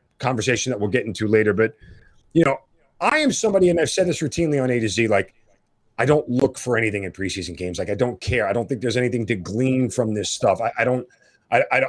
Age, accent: 30-49, American